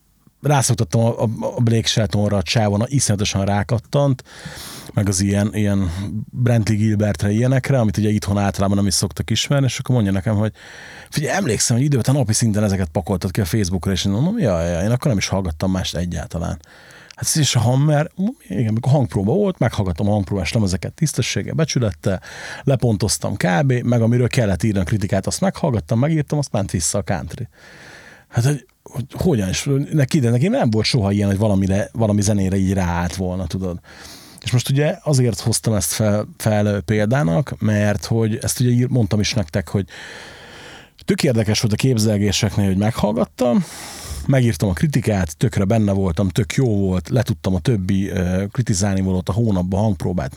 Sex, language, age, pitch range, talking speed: male, Hungarian, 40-59, 100-125 Hz, 165 wpm